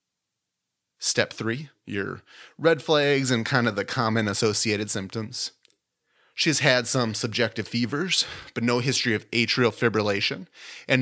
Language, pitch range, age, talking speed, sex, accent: English, 115-145 Hz, 30-49, 130 wpm, male, American